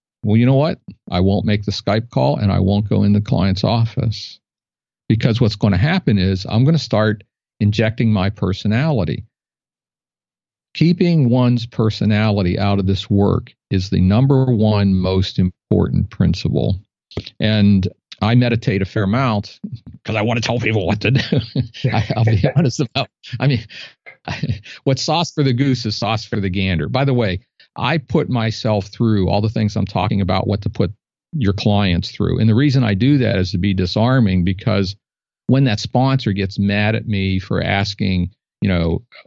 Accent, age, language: American, 50-69, English